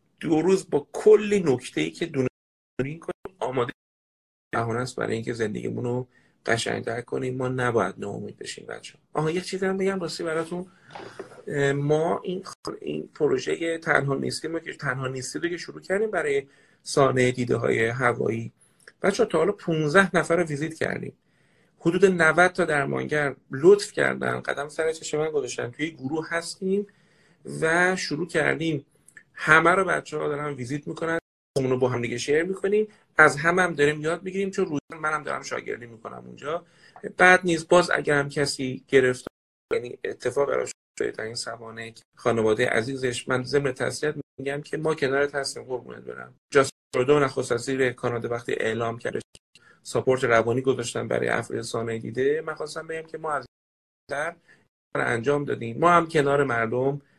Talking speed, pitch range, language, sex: 150 wpm, 130-170 Hz, Persian, male